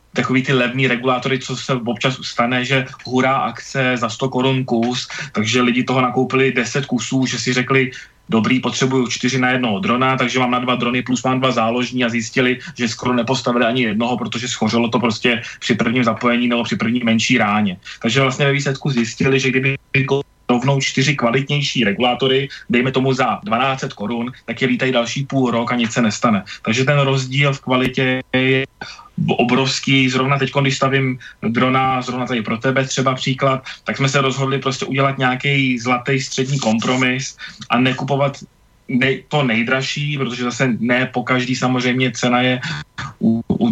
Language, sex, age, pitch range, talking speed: Slovak, male, 20-39, 125-135 Hz, 175 wpm